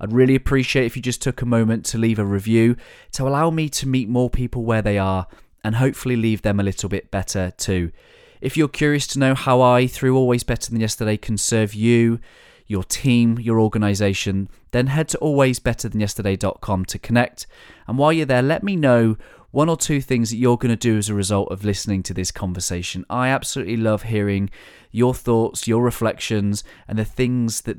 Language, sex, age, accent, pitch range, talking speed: English, male, 20-39, British, 100-130 Hz, 200 wpm